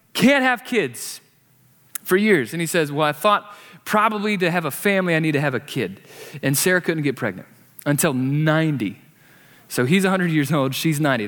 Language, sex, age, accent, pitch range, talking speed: English, male, 30-49, American, 130-160 Hz, 190 wpm